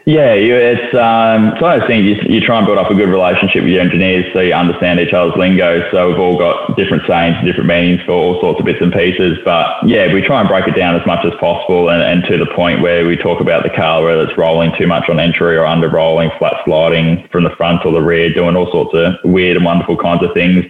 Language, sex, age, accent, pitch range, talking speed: English, male, 10-29, Australian, 85-90 Hz, 265 wpm